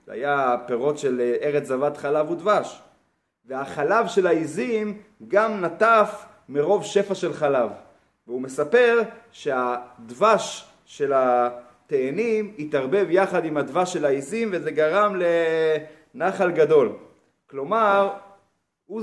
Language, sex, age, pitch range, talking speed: Hebrew, male, 30-49, 150-210 Hz, 105 wpm